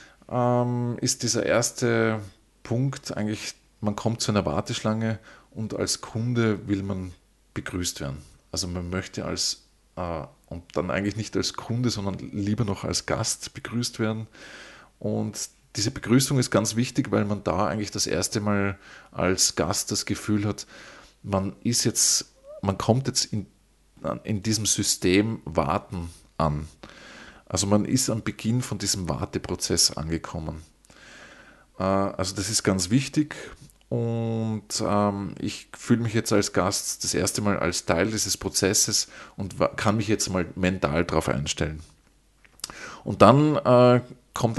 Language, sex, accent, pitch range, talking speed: German, male, Austrian, 95-115 Hz, 140 wpm